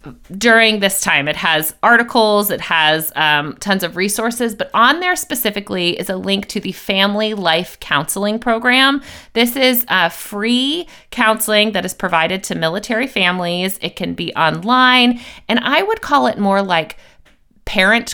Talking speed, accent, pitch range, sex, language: 160 wpm, American, 175-225 Hz, female, English